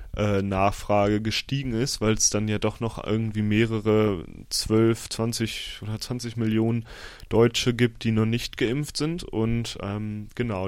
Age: 20-39